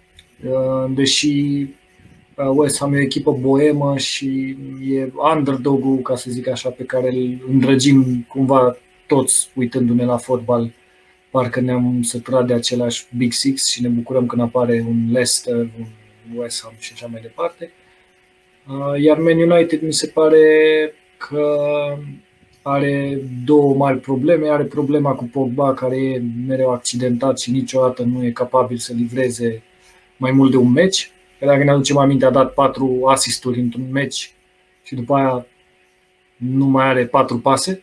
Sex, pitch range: male, 120-140 Hz